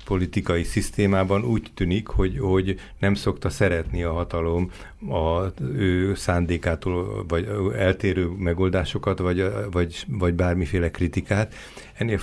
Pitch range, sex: 85-100 Hz, male